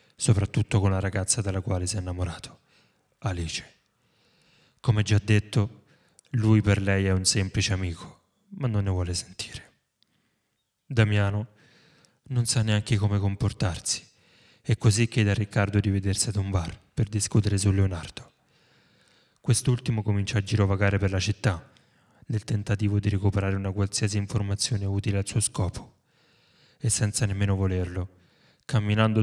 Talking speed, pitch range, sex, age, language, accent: 140 wpm, 100-115 Hz, male, 30-49, Italian, native